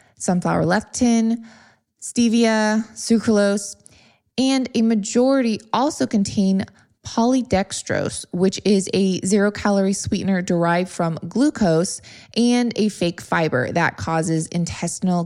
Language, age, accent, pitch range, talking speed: English, 20-39, American, 175-220 Hz, 100 wpm